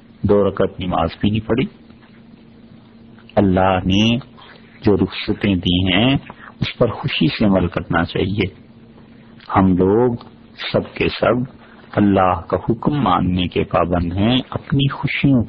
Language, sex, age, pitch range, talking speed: English, male, 50-69, 90-115 Hz, 130 wpm